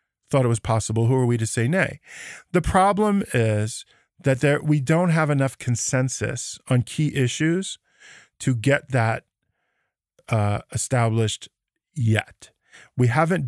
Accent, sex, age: American, male, 40-59